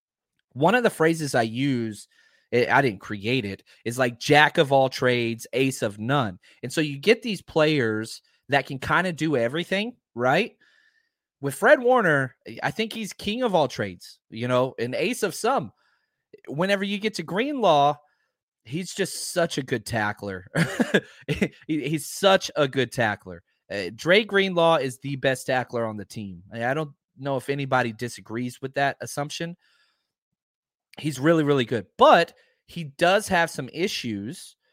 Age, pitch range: 30-49, 125-180 Hz